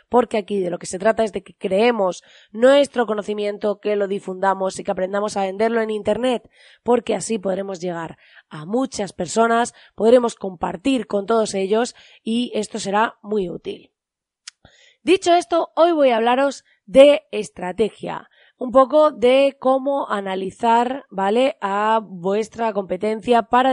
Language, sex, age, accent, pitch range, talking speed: Spanish, female, 20-39, Spanish, 195-245 Hz, 145 wpm